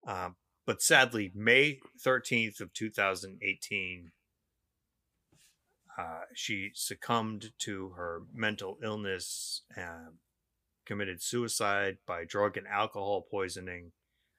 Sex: male